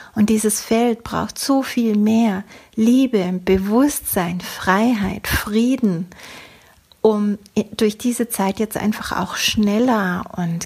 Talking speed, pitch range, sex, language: 115 wpm, 195-230 Hz, female, German